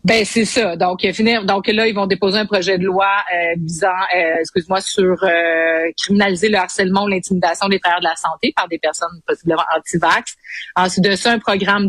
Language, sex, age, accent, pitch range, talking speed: French, female, 30-49, Canadian, 170-210 Hz, 195 wpm